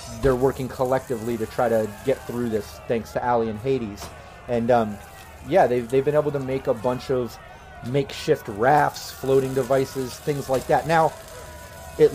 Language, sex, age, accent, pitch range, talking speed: English, male, 30-49, American, 115-145 Hz, 175 wpm